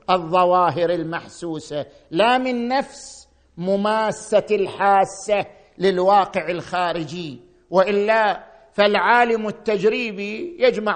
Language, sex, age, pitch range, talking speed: Arabic, male, 50-69, 190-245 Hz, 70 wpm